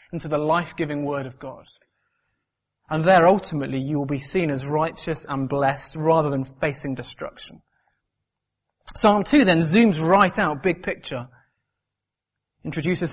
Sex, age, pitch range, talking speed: male, 30-49, 140-190 Hz, 135 wpm